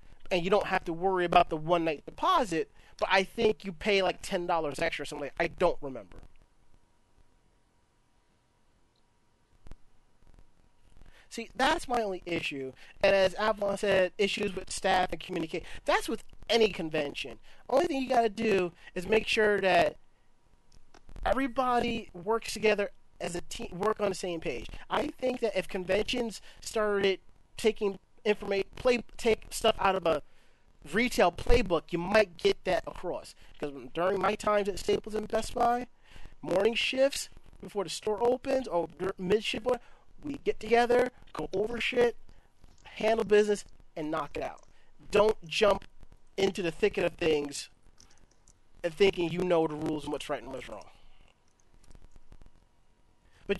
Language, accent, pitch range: English, American, 170-225 Hz